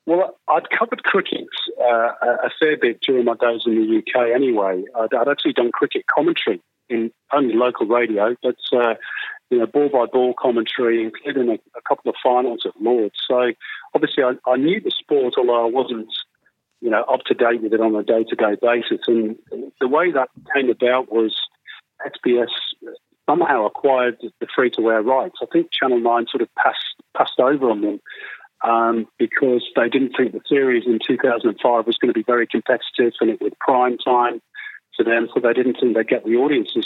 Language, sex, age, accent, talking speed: English, male, 40-59, British, 195 wpm